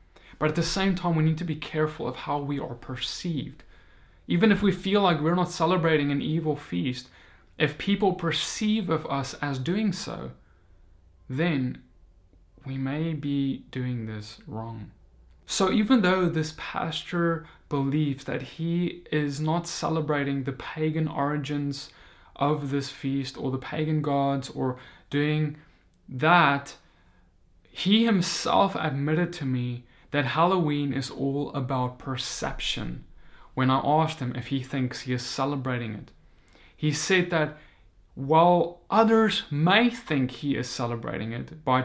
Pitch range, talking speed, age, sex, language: 125-160 Hz, 140 wpm, 20-39, male, English